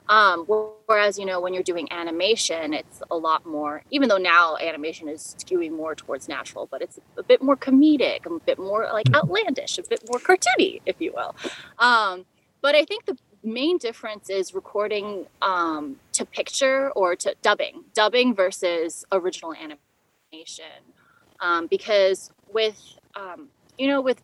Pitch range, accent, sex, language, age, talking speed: 170-270 Hz, American, female, English, 20-39, 160 wpm